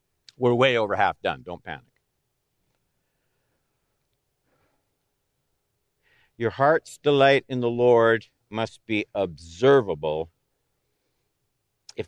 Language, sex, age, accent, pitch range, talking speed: English, male, 60-79, American, 110-140 Hz, 85 wpm